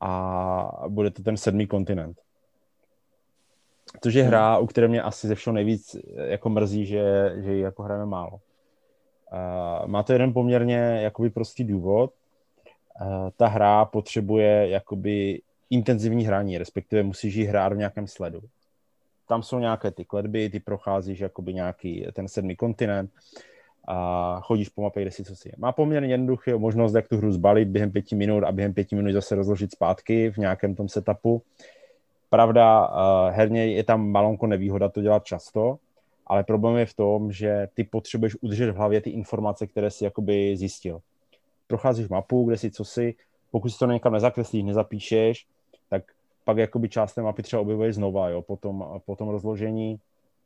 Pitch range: 100-115 Hz